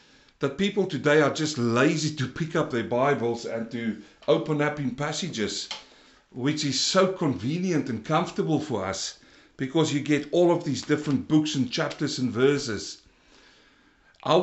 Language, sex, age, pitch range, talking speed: English, male, 60-79, 115-145 Hz, 160 wpm